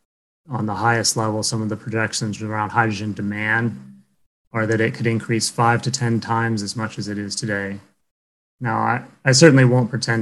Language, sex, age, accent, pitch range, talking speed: English, male, 30-49, American, 105-120 Hz, 190 wpm